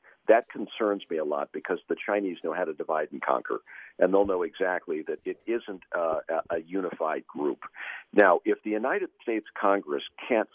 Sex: male